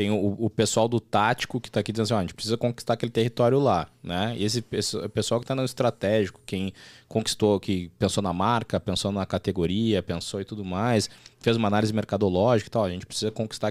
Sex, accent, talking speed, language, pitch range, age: male, Brazilian, 230 wpm, Portuguese, 105-135 Hz, 20-39